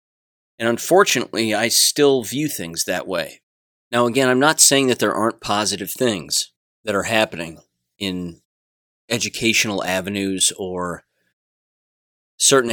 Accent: American